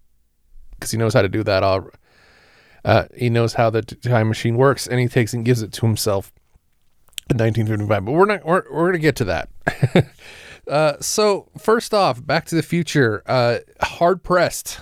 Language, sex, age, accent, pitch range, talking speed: English, male, 30-49, American, 105-130 Hz, 180 wpm